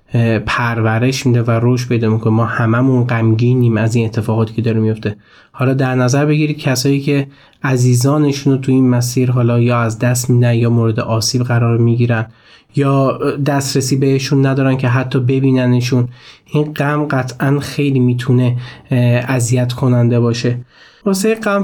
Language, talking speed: Persian, 155 wpm